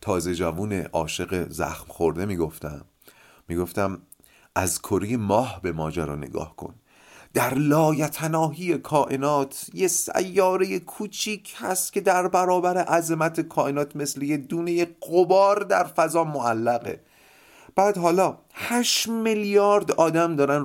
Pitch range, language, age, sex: 110-175 Hz, Persian, 30-49, male